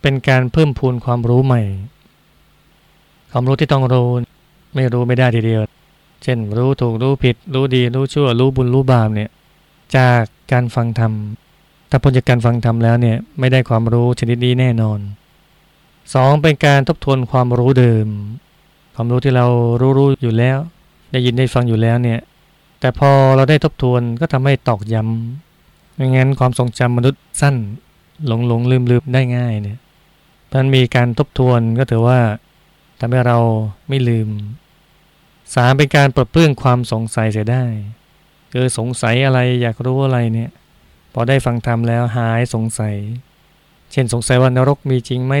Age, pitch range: 20-39, 120-140 Hz